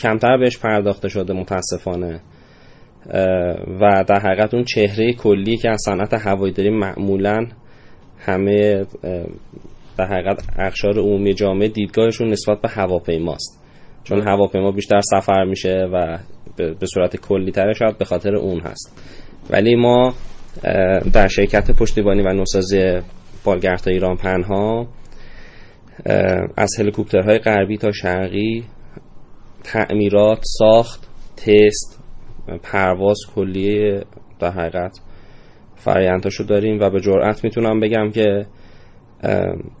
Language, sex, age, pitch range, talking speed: Persian, male, 20-39, 95-110 Hz, 105 wpm